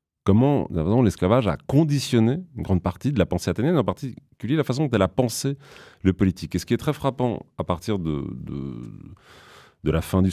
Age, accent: 40-59, French